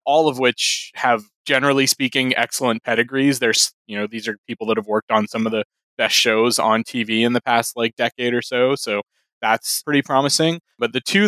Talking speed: 205 wpm